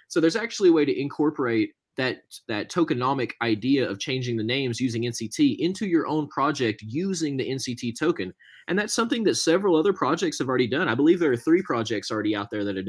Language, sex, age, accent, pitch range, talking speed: English, male, 20-39, American, 120-175 Hz, 215 wpm